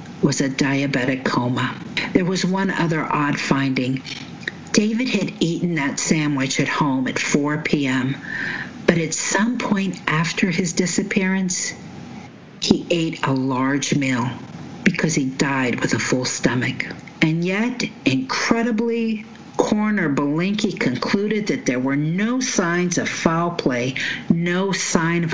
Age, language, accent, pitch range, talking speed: 50-69, English, American, 150-215 Hz, 135 wpm